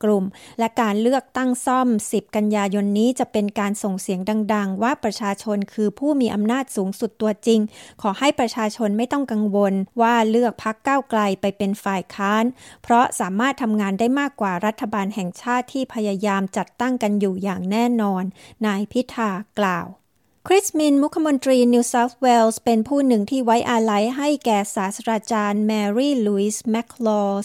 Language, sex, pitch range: Thai, female, 210-245 Hz